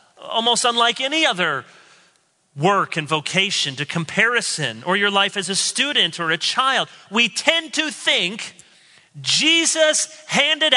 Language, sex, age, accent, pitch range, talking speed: English, male, 40-59, American, 160-250 Hz, 135 wpm